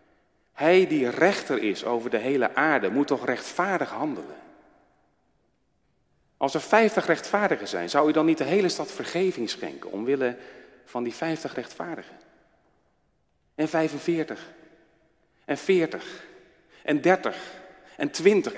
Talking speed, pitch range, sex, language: 125 wpm, 115-185 Hz, male, Dutch